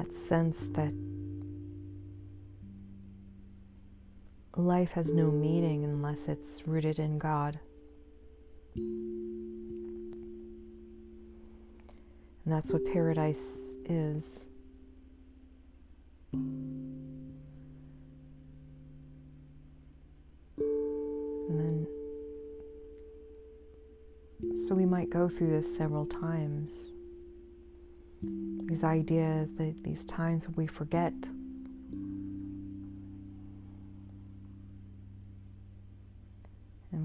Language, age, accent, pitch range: English, 40-59, American, 95-150 Hz